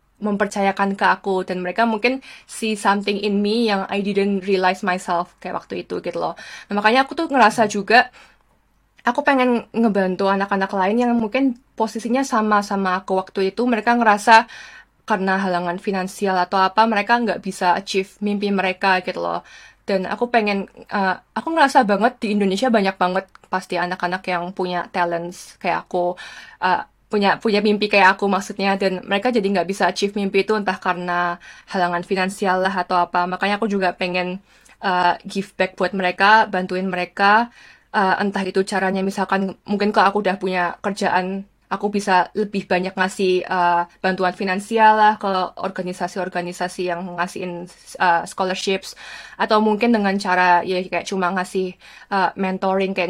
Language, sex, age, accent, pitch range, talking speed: Indonesian, female, 20-39, native, 185-210 Hz, 160 wpm